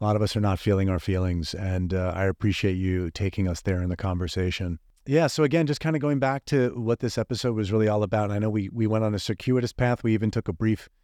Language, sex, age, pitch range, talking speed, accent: English, male, 30-49, 95-115 Hz, 270 wpm, American